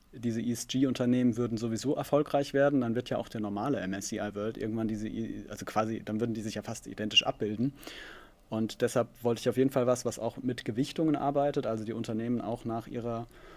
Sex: male